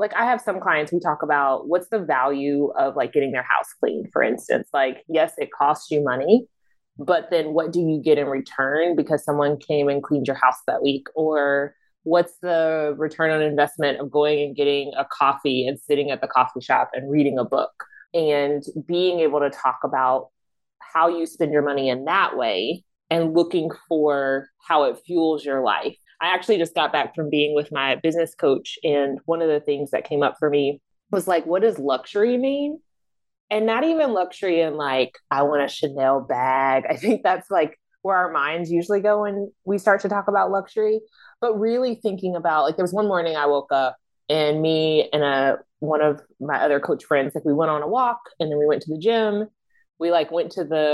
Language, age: English, 20-39